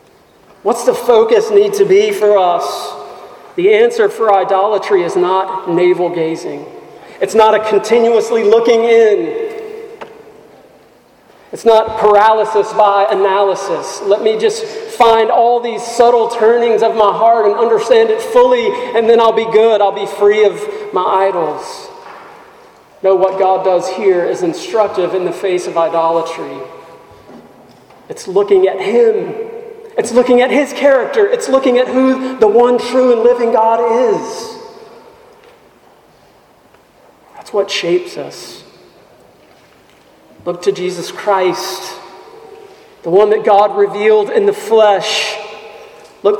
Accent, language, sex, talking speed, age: American, English, male, 130 wpm, 40-59